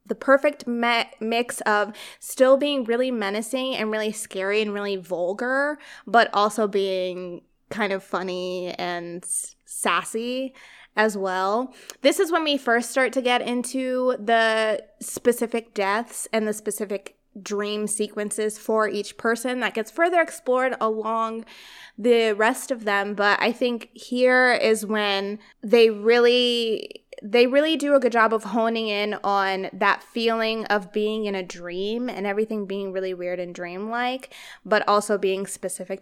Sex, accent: female, American